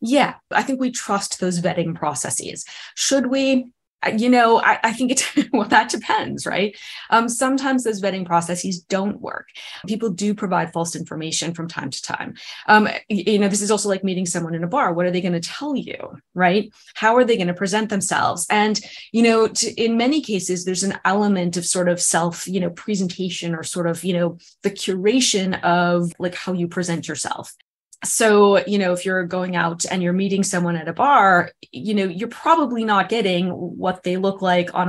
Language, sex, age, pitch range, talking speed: English, female, 20-39, 175-220 Hz, 195 wpm